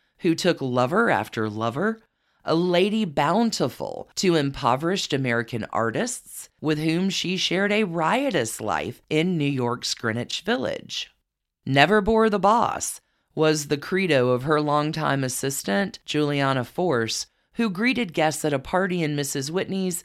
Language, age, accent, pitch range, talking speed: English, 40-59, American, 135-200 Hz, 140 wpm